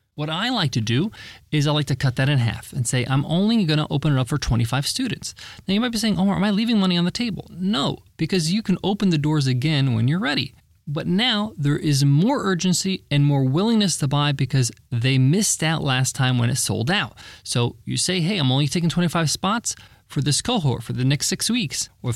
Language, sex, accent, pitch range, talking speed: English, male, American, 130-190 Hz, 240 wpm